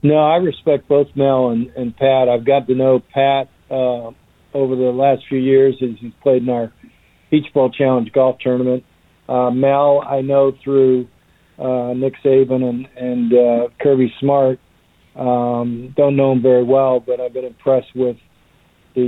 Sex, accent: male, American